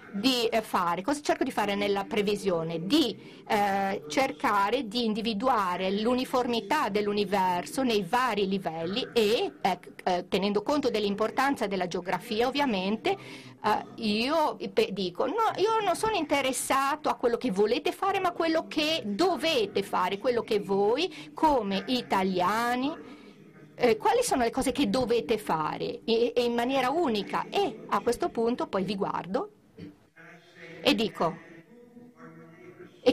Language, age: Italian, 50-69